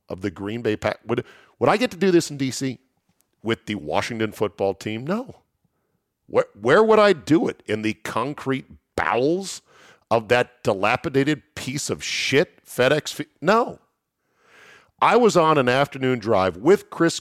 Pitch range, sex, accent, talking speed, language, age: 105-150 Hz, male, American, 160 wpm, English, 50-69